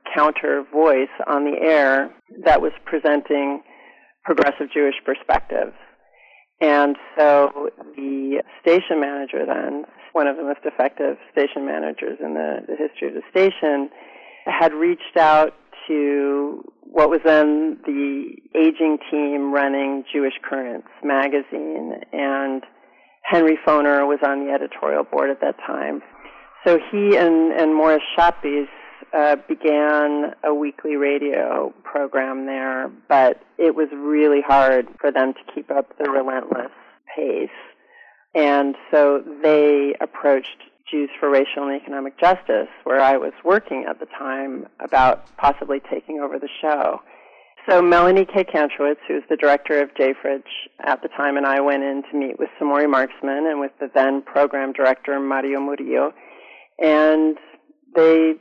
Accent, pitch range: American, 140-160 Hz